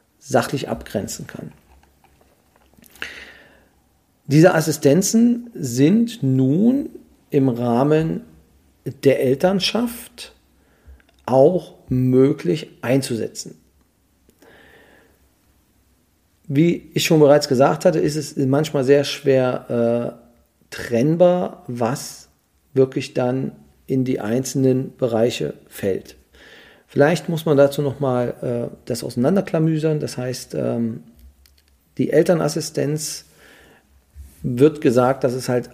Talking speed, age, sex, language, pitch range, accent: 85 wpm, 40-59, male, German, 115-155 Hz, German